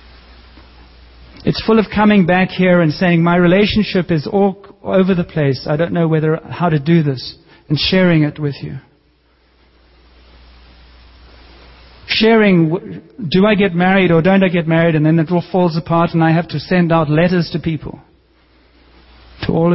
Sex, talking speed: male, 165 wpm